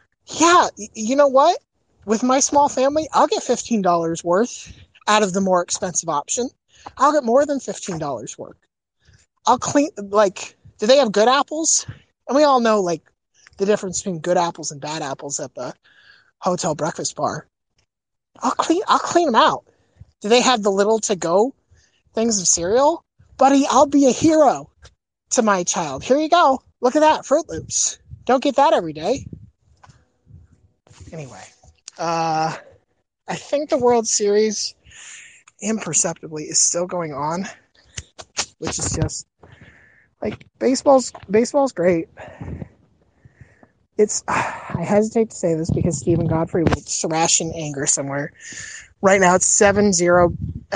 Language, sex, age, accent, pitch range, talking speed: English, male, 30-49, American, 170-265 Hz, 150 wpm